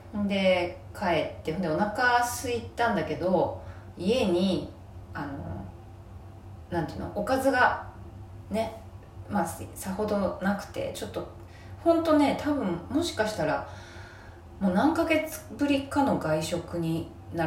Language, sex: Japanese, female